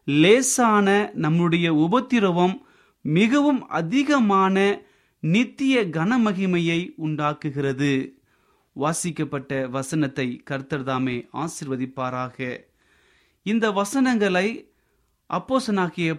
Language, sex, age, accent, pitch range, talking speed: Tamil, male, 30-49, native, 155-215 Hz, 50 wpm